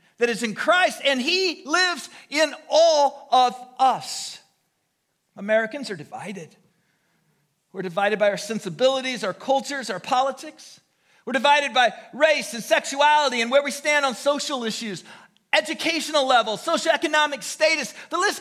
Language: English